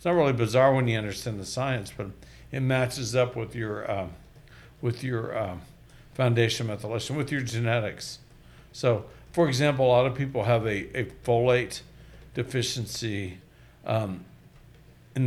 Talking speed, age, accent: 150 wpm, 60-79, American